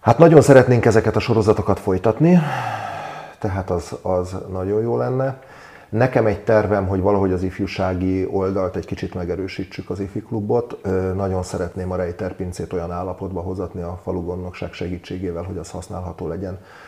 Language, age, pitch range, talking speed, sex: Hungarian, 40-59, 90-100 Hz, 140 wpm, male